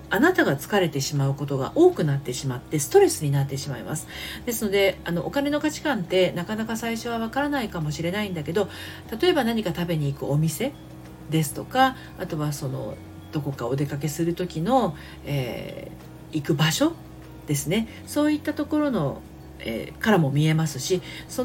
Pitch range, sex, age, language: 140-210 Hz, female, 40-59, Japanese